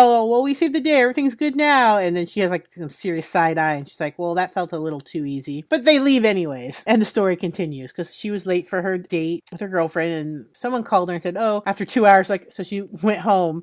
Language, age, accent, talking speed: English, 30-49, American, 270 wpm